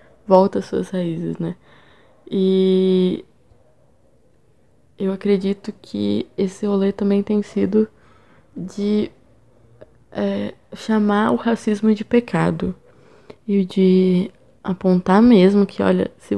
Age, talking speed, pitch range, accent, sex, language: 10-29, 100 wpm, 175-210 Hz, Brazilian, female, Portuguese